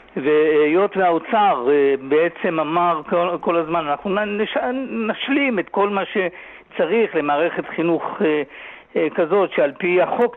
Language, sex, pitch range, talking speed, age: Hebrew, male, 160-220 Hz, 105 wpm, 60-79